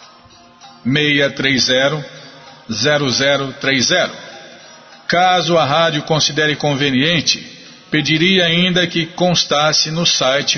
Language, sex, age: Portuguese, male, 50-69